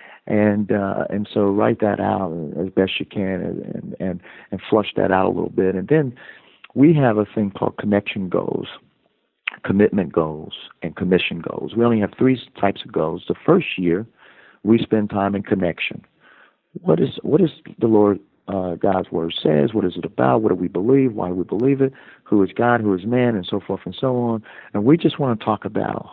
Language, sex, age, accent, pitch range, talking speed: English, male, 50-69, American, 90-115 Hz, 210 wpm